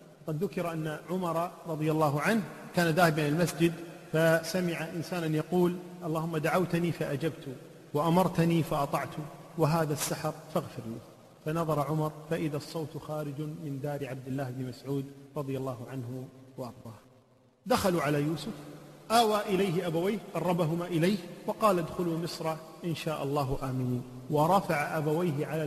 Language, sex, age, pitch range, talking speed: Arabic, male, 40-59, 145-185 Hz, 135 wpm